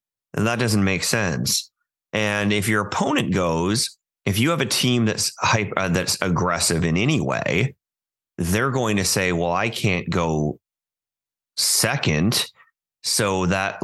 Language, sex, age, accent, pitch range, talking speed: English, male, 30-49, American, 90-115 Hz, 145 wpm